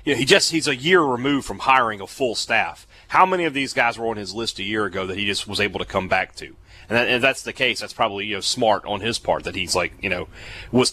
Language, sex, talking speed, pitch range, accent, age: English, male, 280 wpm, 105-130 Hz, American, 30-49